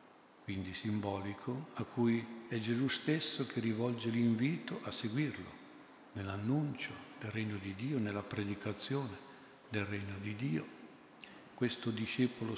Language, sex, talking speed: Italian, male, 120 wpm